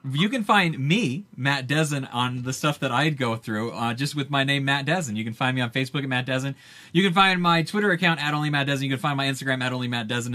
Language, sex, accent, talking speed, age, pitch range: English, male, American, 255 wpm, 30-49, 130-160 Hz